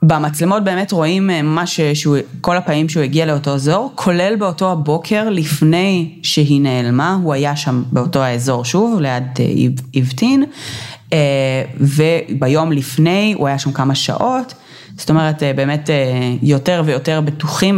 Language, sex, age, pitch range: Hebrew, female, 30-49, 140-175 Hz